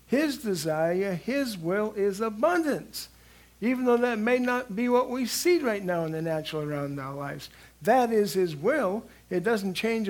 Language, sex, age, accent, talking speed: English, male, 60-79, American, 185 wpm